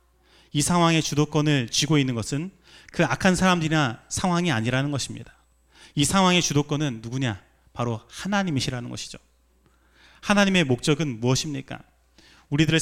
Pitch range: 115-180 Hz